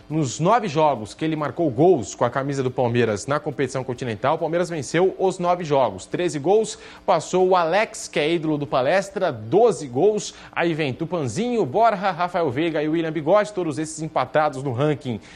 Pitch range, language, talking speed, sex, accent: 135-180 Hz, Portuguese, 185 wpm, male, Brazilian